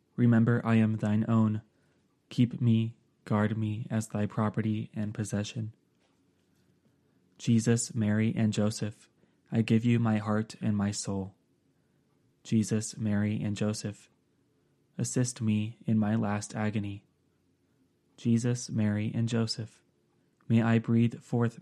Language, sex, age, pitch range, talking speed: English, male, 20-39, 100-115 Hz, 120 wpm